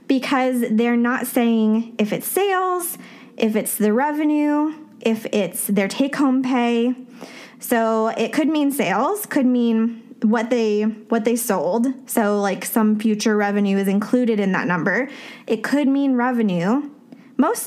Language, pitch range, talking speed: English, 210-260 Hz, 145 wpm